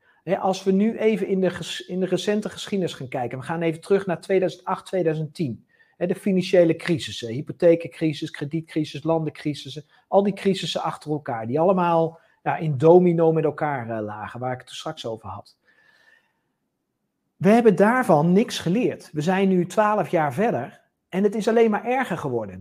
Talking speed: 180 wpm